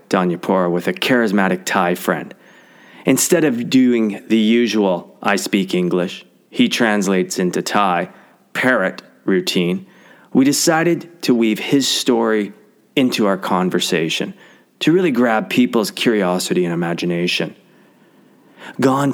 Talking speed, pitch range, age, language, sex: 115 wpm, 95-125 Hz, 30-49, English, male